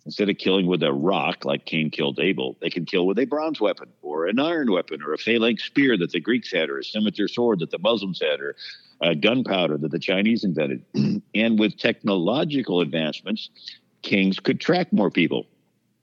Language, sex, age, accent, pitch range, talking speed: English, male, 60-79, American, 90-115 Hz, 200 wpm